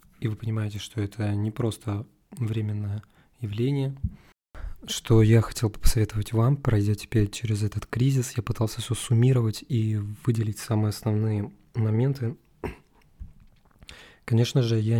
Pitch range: 105-120 Hz